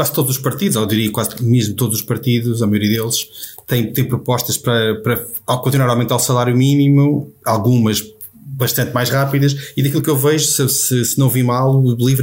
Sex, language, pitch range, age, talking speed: male, Portuguese, 110-135 Hz, 20-39, 205 wpm